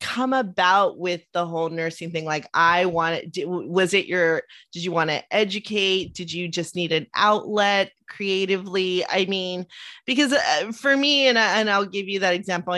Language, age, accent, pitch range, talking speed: English, 30-49, American, 155-185 Hz, 185 wpm